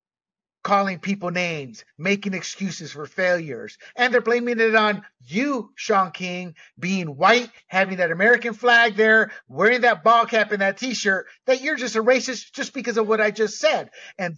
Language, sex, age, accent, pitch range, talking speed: English, male, 50-69, American, 175-245 Hz, 165 wpm